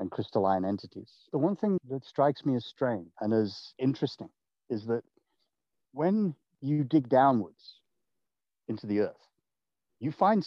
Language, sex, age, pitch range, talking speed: English, male, 50-69, 110-150 Hz, 145 wpm